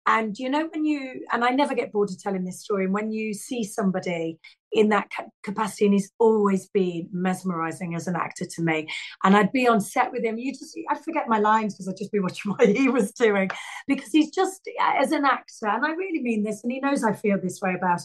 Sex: female